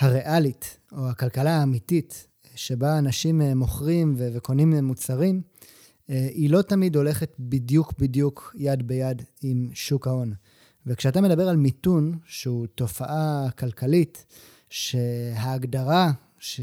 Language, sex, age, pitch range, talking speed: Hebrew, male, 20-39, 130-165 Hz, 110 wpm